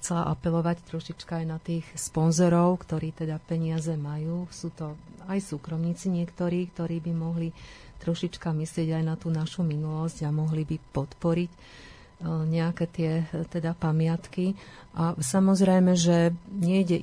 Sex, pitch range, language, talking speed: female, 160-175 Hz, Slovak, 135 wpm